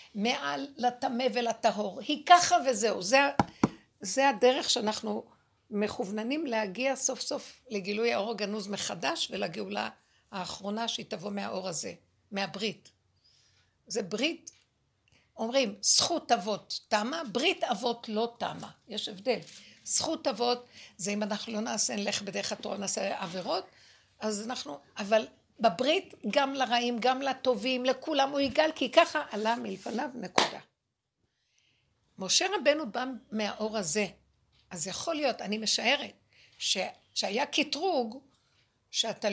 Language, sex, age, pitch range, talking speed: Hebrew, female, 60-79, 210-275 Hz, 120 wpm